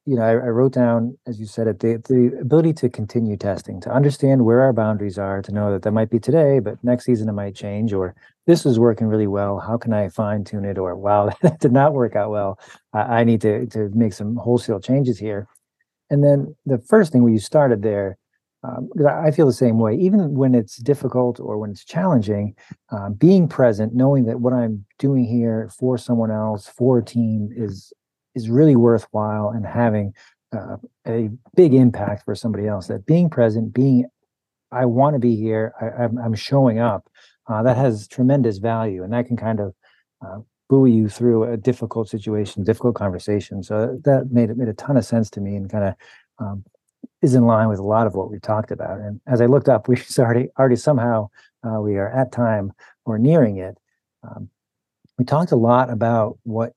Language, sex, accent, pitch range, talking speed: English, male, American, 105-125 Hz, 210 wpm